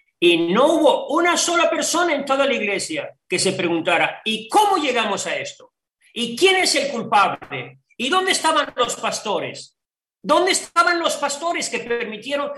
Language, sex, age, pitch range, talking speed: Spanish, male, 40-59, 170-275 Hz, 160 wpm